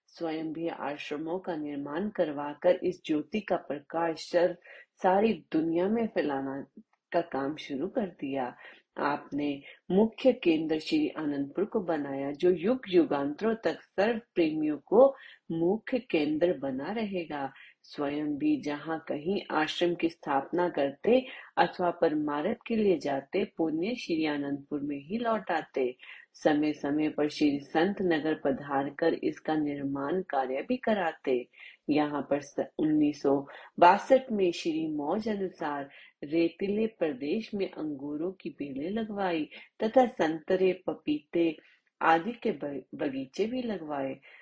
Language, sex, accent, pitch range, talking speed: Hindi, female, native, 145-205 Hz, 125 wpm